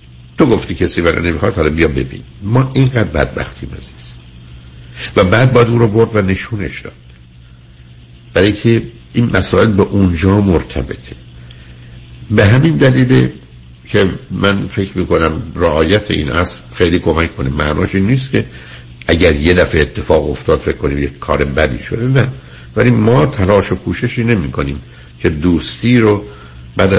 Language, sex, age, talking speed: Persian, male, 60-79, 155 wpm